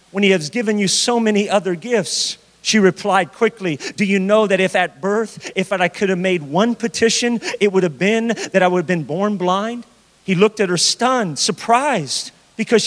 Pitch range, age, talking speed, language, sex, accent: 190-240 Hz, 40-59, 205 wpm, English, male, American